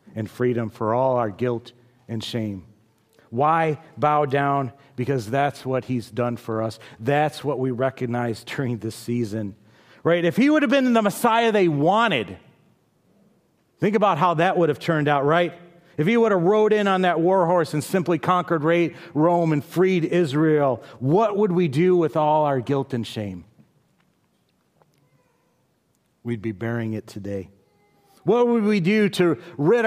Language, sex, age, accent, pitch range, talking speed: English, male, 40-59, American, 115-170 Hz, 165 wpm